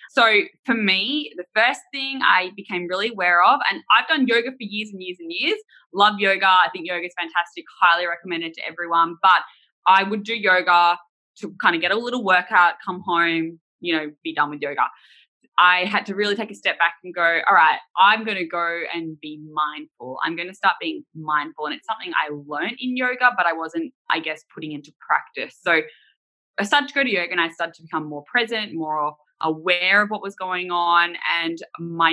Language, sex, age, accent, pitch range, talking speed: English, female, 10-29, Australian, 170-230 Hz, 215 wpm